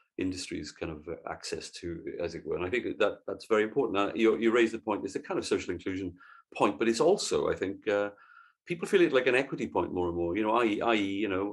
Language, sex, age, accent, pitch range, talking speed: English, male, 40-59, British, 95-145 Hz, 260 wpm